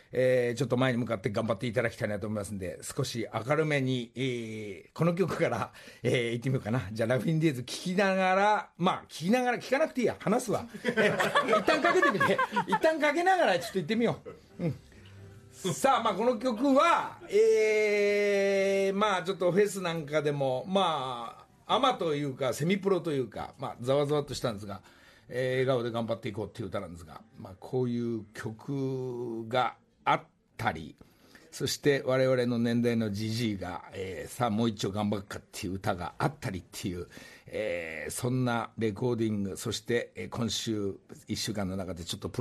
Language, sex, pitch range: Japanese, male, 110-175 Hz